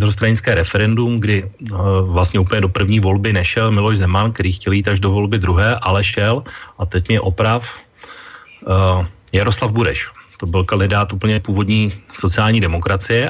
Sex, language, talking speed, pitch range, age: male, Slovak, 160 wpm, 95-115 Hz, 30-49